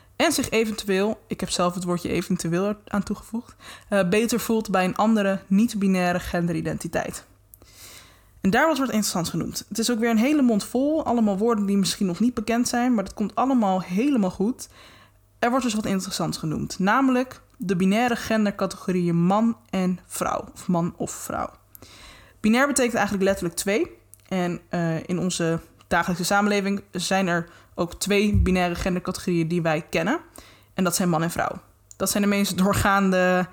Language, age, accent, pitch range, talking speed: Dutch, 20-39, Dutch, 175-220 Hz, 170 wpm